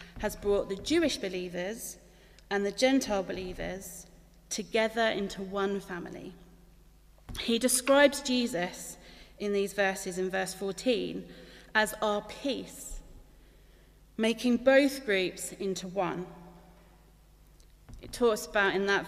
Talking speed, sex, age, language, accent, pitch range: 110 wpm, female, 30-49, English, British, 185-235 Hz